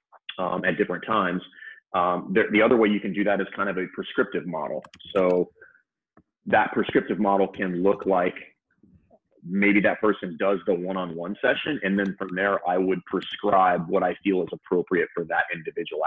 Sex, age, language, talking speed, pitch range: male, 30-49, English, 180 wpm, 90-100 Hz